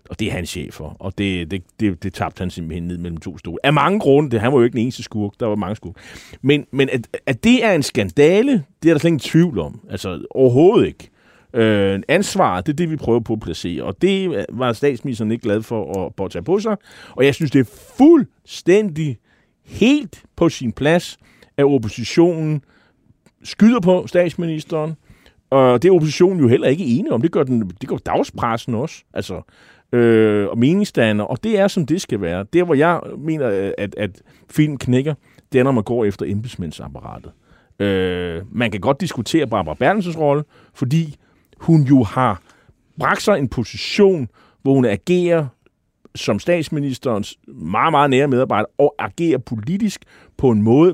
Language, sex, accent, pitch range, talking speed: Danish, male, native, 110-165 Hz, 190 wpm